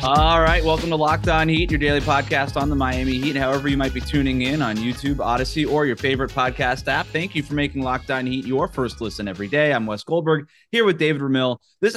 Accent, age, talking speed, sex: American, 30-49, 240 wpm, male